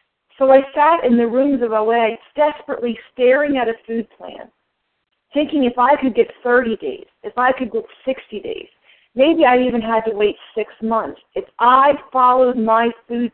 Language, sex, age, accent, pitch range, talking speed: English, female, 40-59, American, 230-310 Hz, 180 wpm